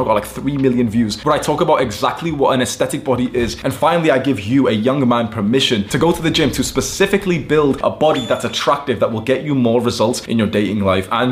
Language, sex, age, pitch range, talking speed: English, male, 20-39, 110-145 Hz, 250 wpm